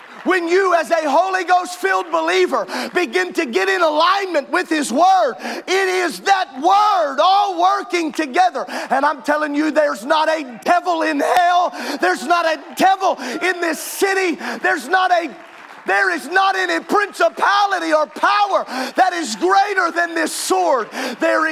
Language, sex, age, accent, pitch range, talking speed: English, male, 40-59, American, 320-380 Hz, 160 wpm